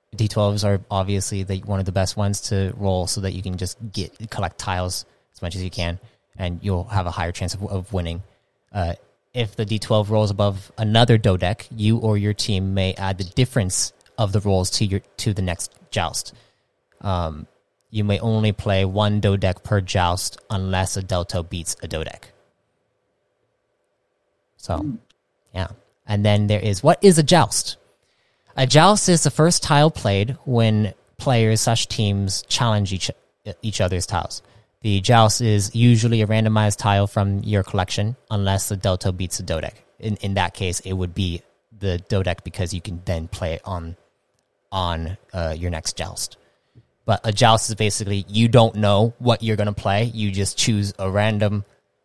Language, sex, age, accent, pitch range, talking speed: English, male, 20-39, American, 95-110 Hz, 180 wpm